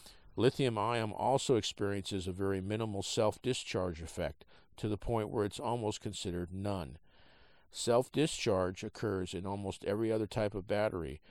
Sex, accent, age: male, American, 50-69